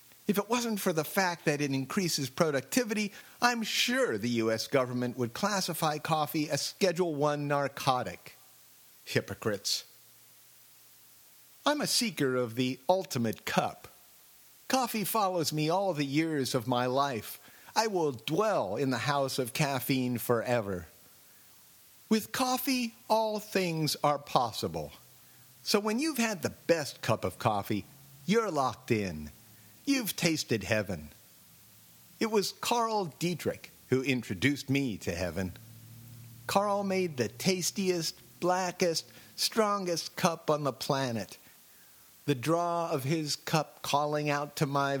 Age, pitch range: 50-69, 125-180 Hz